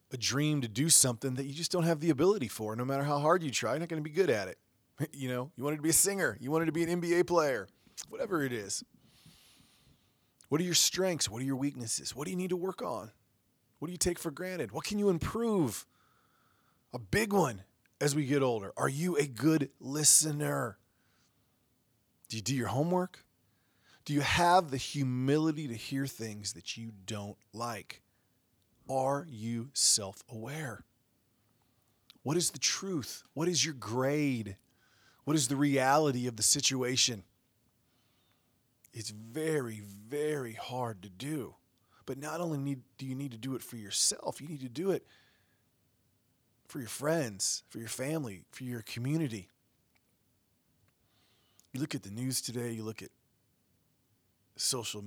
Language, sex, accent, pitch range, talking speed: English, male, American, 115-150 Hz, 170 wpm